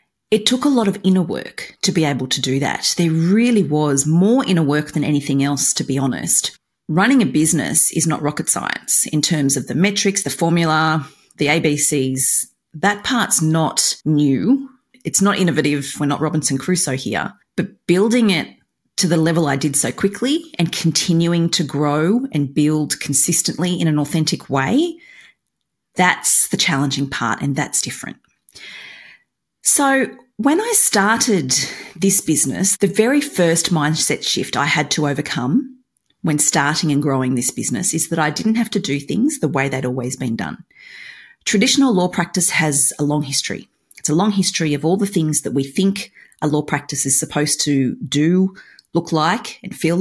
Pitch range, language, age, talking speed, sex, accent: 145-200 Hz, English, 30-49, 175 wpm, female, Australian